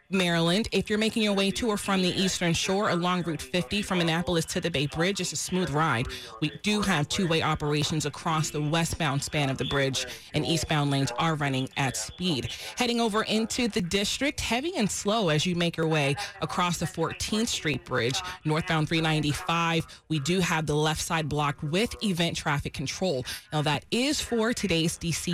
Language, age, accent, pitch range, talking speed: English, 30-49, American, 150-200 Hz, 190 wpm